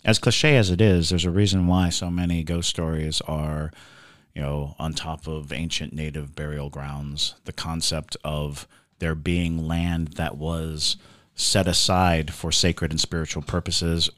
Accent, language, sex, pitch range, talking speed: American, English, male, 75-90 Hz, 160 wpm